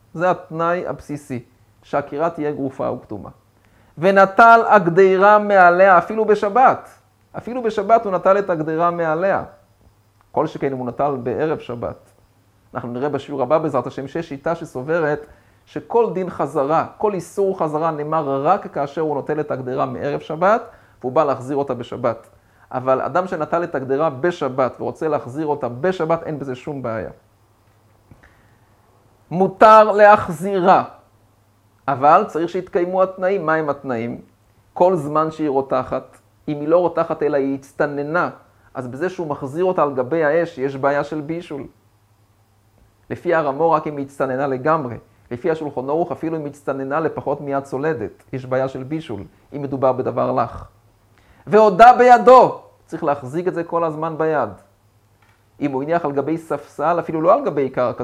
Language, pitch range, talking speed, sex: Hebrew, 115-170 Hz, 150 wpm, male